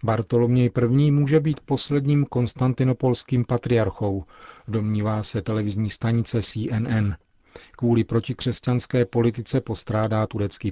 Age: 40-59